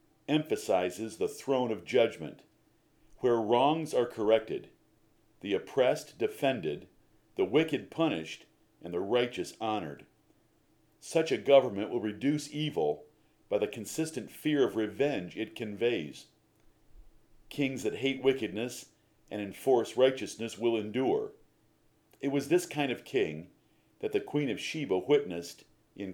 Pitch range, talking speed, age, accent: 110-145 Hz, 125 wpm, 50-69, American